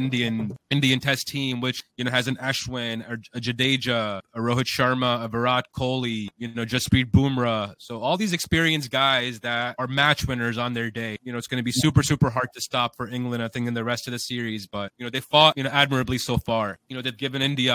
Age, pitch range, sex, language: 20-39, 120-135 Hz, male, English